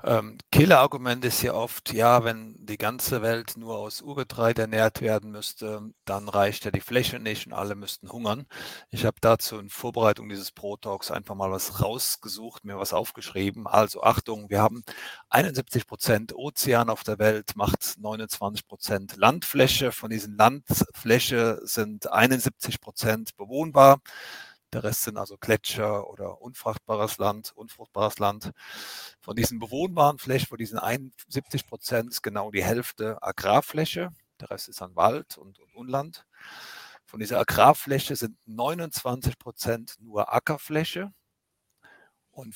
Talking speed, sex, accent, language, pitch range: 140 wpm, male, German, German, 105-125 Hz